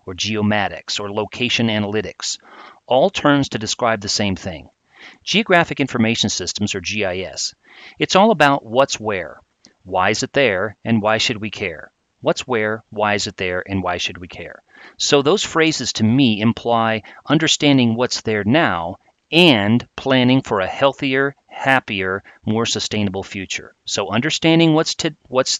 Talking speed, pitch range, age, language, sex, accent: 155 wpm, 105-135 Hz, 40-59, English, male, American